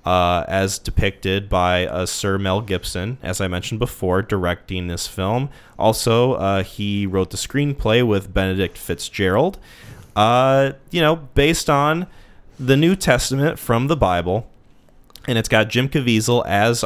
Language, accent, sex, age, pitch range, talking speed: English, American, male, 20-39, 95-130 Hz, 145 wpm